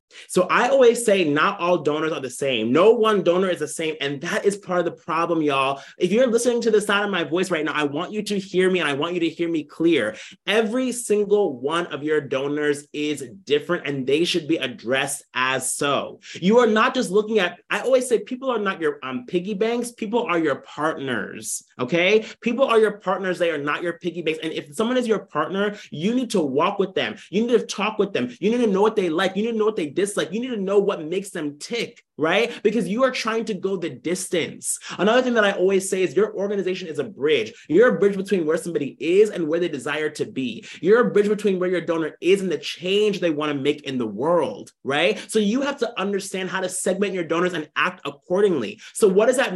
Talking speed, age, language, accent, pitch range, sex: 250 wpm, 30-49, English, American, 160-215 Hz, male